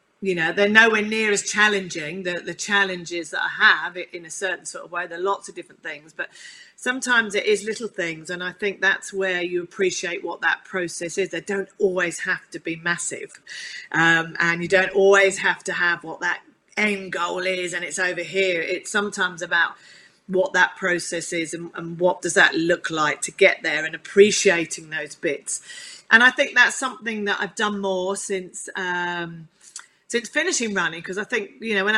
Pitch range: 175-215 Hz